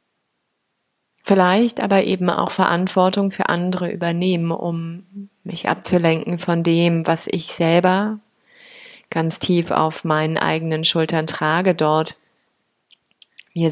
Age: 30-49